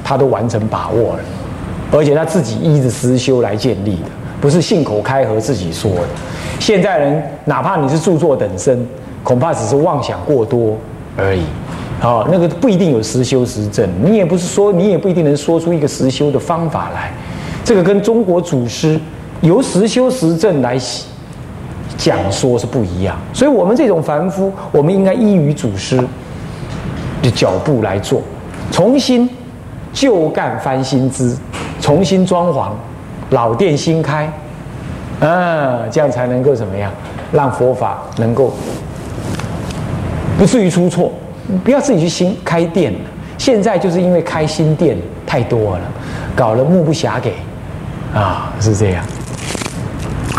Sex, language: male, Chinese